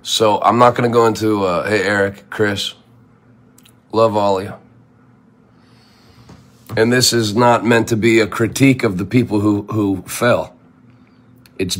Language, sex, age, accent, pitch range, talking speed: English, male, 40-59, American, 100-125 Hz, 160 wpm